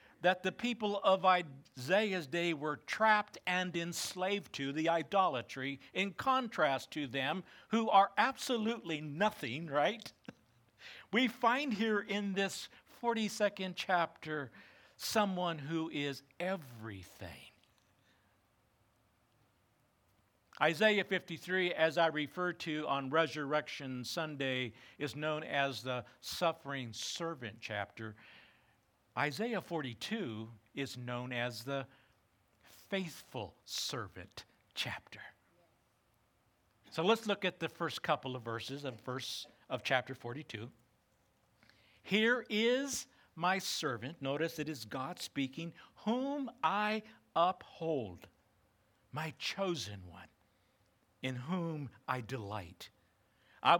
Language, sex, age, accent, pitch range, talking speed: English, male, 60-79, American, 120-185 Hz, 105 wpm